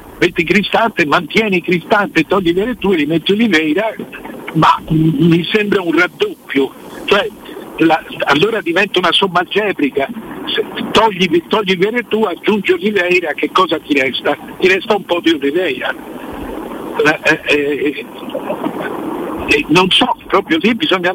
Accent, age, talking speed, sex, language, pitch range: native, 60-79, 130 wpm, male, Italian, 150-220 Hz